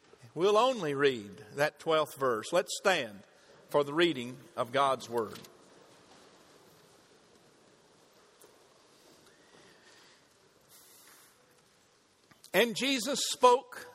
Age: 50-69